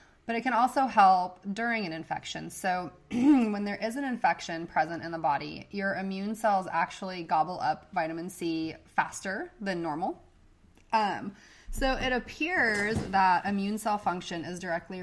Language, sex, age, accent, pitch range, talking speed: English, female, 20-39, American, 165-215 Hz, 155 wpm